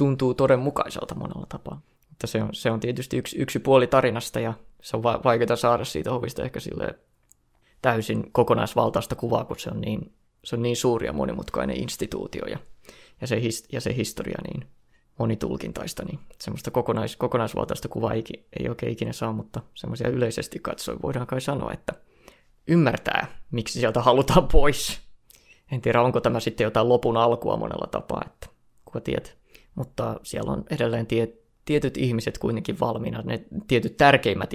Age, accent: 20-39, native